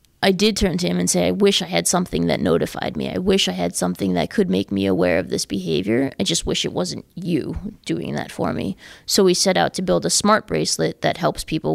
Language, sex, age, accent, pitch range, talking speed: English, female, 20-39, American, 155-195 Hz, 255 wpm